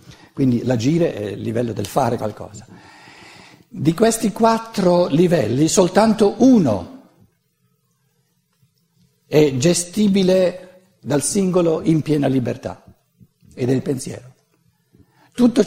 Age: 60-79